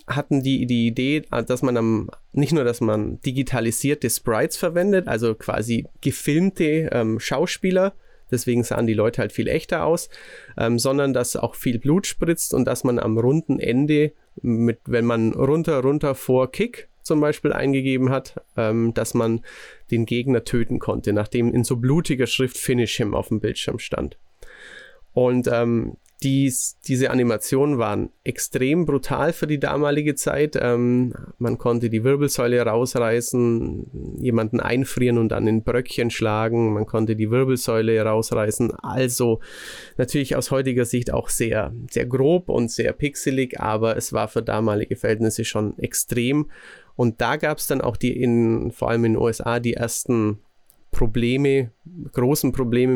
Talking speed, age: 155 wpm, 30-49